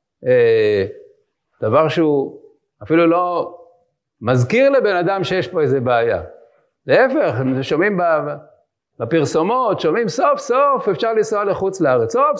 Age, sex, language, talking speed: 50-69, male, English, 110 wpm